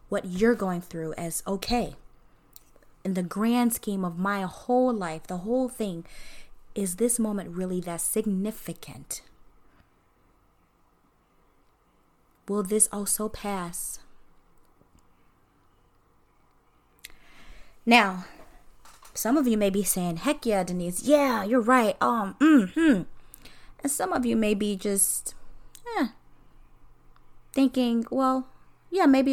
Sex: female